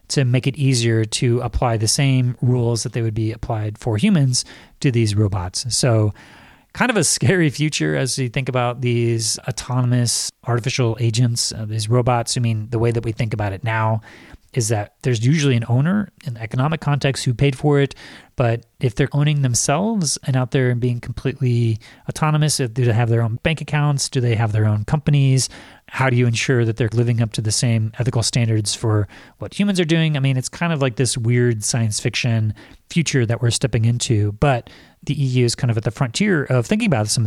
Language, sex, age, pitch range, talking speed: English, male, 30-49, 110-135 Hz, 210 wpm